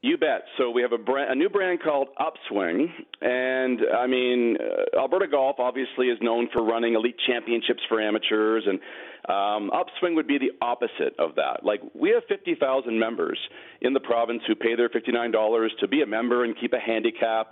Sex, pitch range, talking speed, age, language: male, 120-155 Hz, 190 wpm, 40-59, English